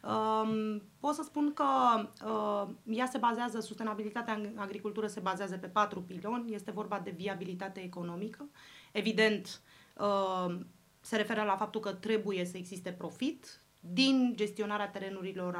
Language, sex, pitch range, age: Romanian, female, 190-230 Hz, 30-49